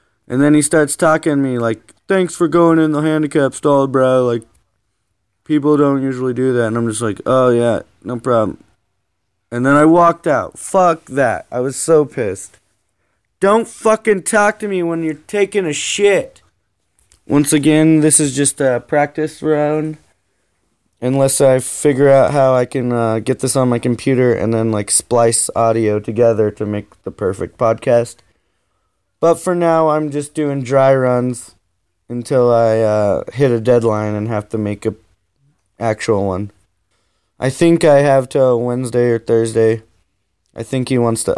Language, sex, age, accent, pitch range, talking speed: English, male, 20-39, American, 105-145 Hz, 170 wpm